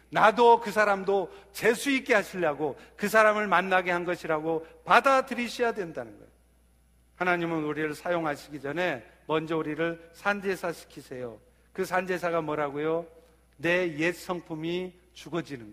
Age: 50-69